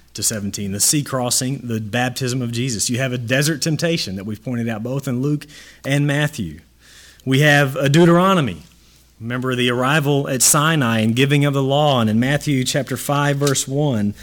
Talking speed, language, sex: 185 wpm, English, male